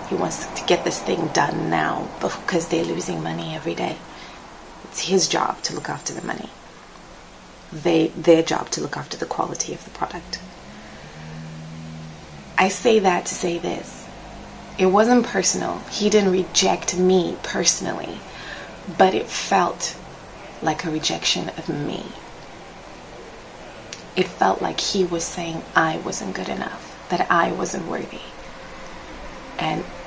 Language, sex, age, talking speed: English, female, 20-39, 140 wpm